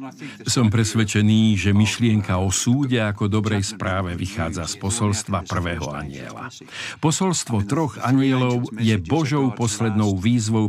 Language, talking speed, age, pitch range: Slovak, 120 wpm, 50-69, 105-140 Hz